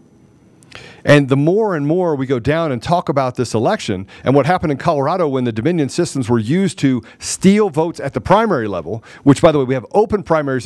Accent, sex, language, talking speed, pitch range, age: American, male, English, 220 wpm, 130-175 Hz, 40-59